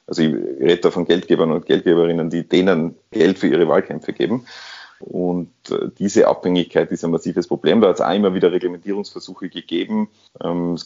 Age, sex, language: 30-49, male, German